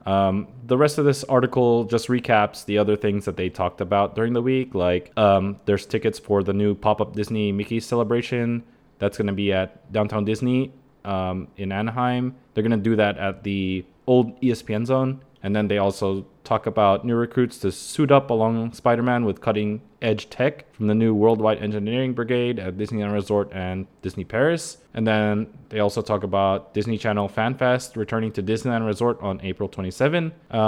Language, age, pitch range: English, 20-39, 100-125 Hz